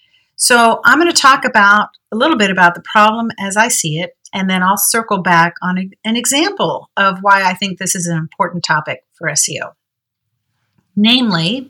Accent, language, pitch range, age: American, English, 175-240 Hz, 50-69